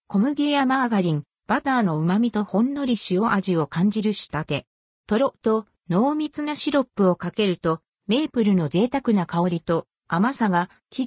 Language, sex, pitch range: Japanese, female, 175-255 Hz